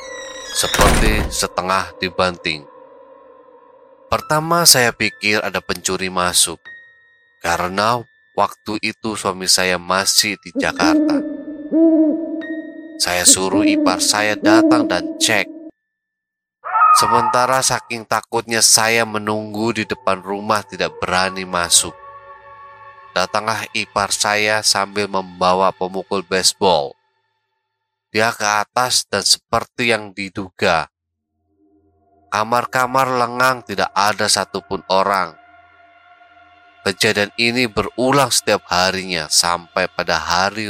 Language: Indonesian